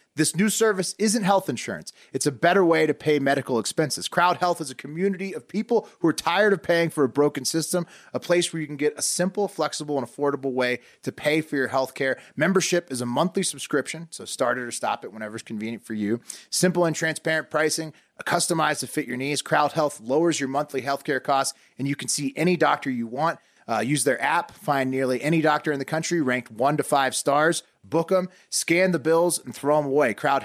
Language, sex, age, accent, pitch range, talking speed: English, male, 30-49, American, 135-170 Hz, 225 wpm